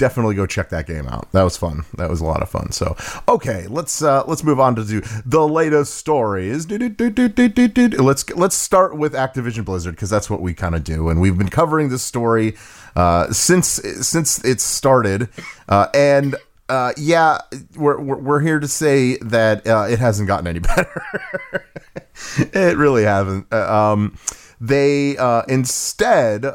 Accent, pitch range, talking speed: American, 100-145 Hz, 190 wpm